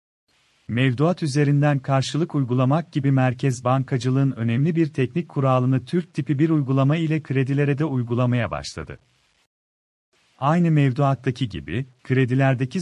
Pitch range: 120-150 Hz